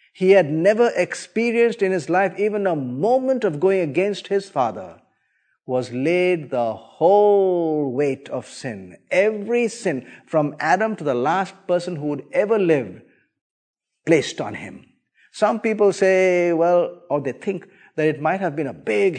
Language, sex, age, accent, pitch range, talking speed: Filipino, male, 50-69, Indian, 140-185 Hz, 160 wpm